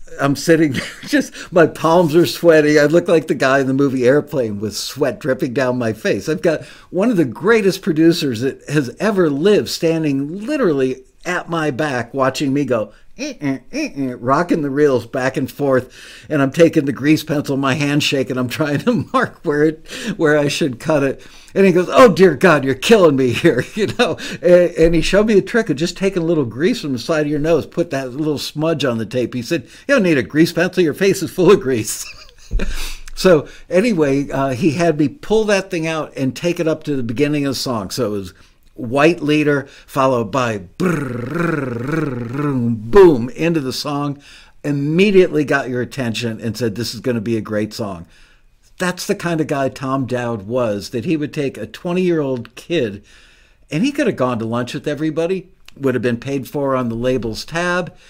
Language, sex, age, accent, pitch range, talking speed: English, male, 60-79, American, 125-165 Hz, 210 wpm